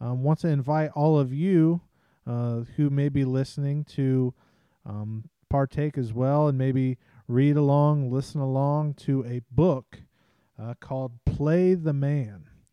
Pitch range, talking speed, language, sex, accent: 125-150 Hz, 145 wpm, English, male, American